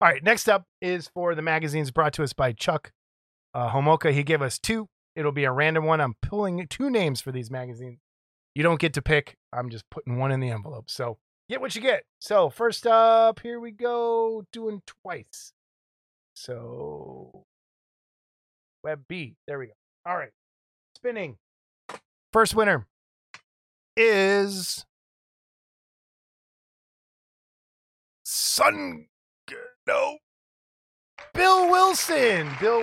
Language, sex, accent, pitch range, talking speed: English, male, American, 135-215 Hz, 135 wpm